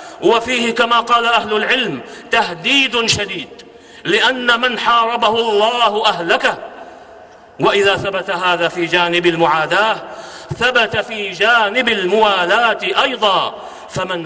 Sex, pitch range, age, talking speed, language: male, 205-235 Hz, 50-69, 100 wpm, Arabic